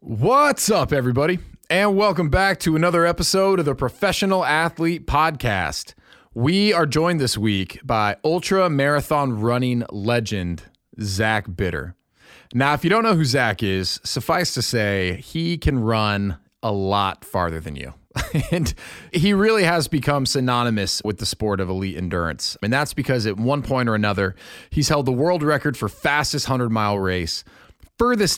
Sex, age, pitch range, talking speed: male, 30-49, 105-160 Hz, 160 wpm